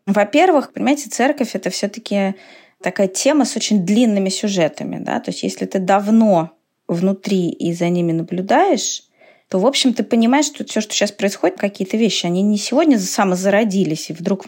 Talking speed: 175 wpm